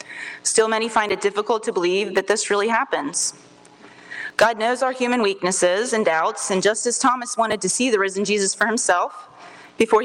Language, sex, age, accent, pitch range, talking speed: English, female, 30-49, American, 180-220 Hz, 185 wpm